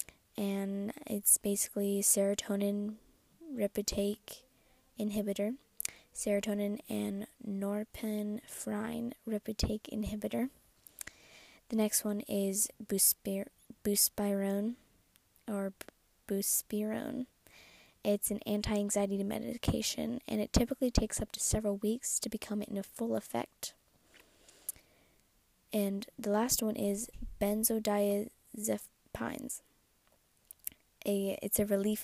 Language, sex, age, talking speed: English, female, 20-39, 90 wpm